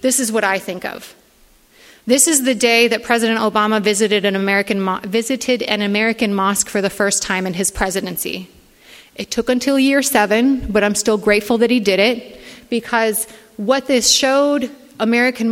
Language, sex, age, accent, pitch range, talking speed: English, female, 30-49, American, 205-240 Hz, 180 wpm